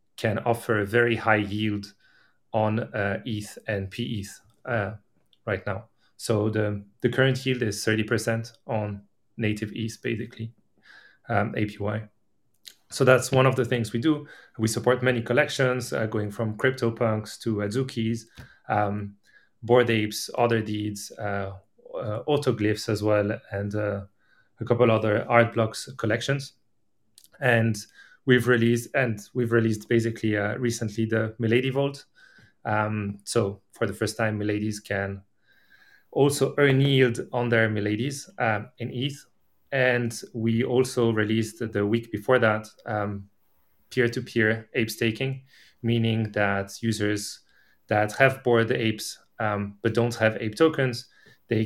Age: 30-49